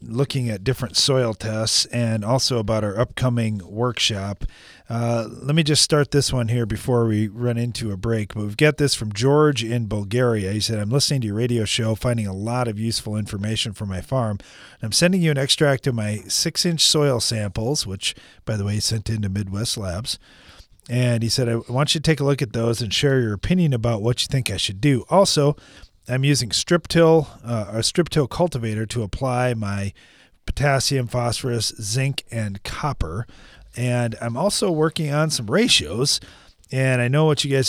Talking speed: 190 wpm